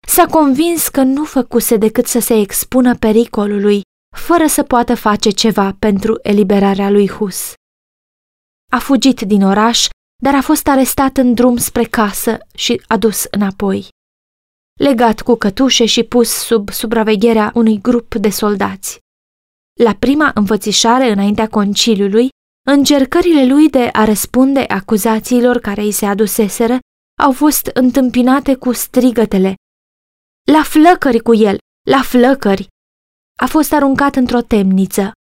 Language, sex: Romanian, female